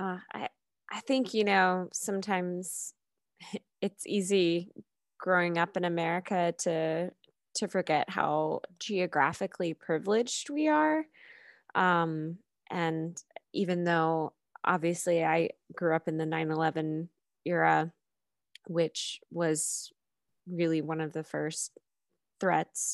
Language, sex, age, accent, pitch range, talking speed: English, female, 20-39, American, 165-200 Hz, 105 wpm